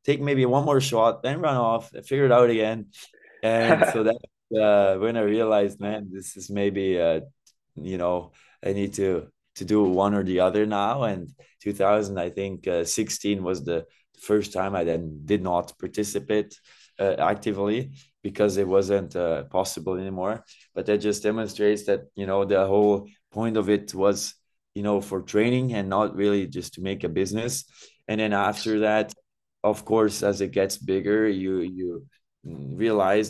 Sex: male